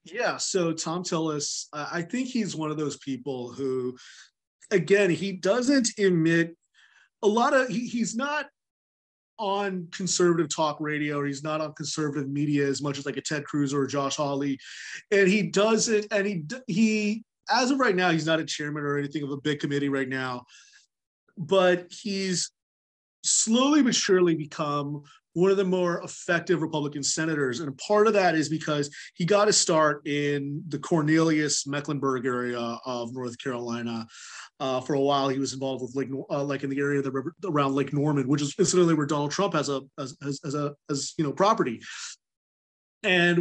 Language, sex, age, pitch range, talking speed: English, male, 30-49, 140-185 Hz, 180 wpm